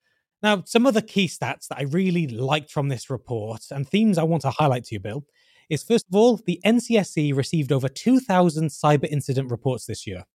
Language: English